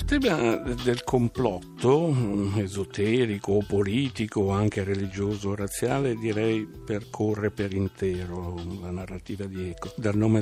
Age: 60-79